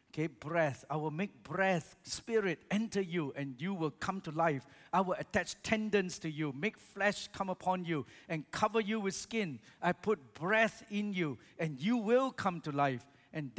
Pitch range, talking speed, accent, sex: 160-225 Hz, 190 wpm, Malaysian, male